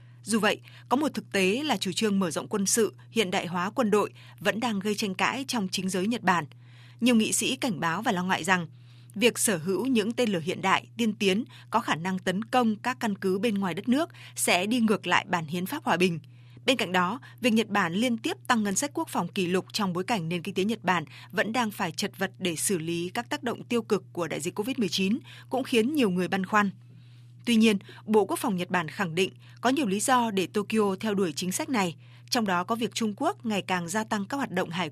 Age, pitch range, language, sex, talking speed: 20-39, 175-225 Hz, Vietnamese, female, 255 wpm